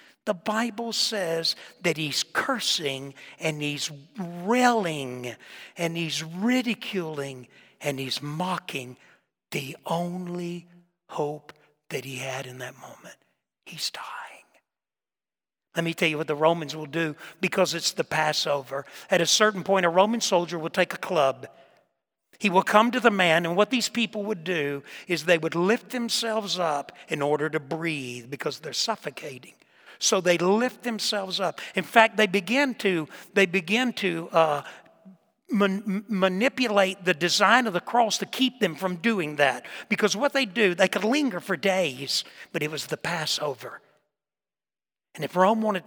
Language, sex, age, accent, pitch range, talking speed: English, male, 60-79, American, 155-205 Hz, 155 wpm